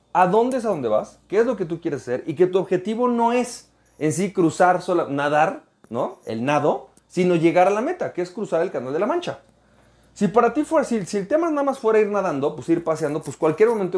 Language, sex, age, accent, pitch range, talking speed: Spanish, male, 30-49, Mexican, 135-215 Hz, 255 wpm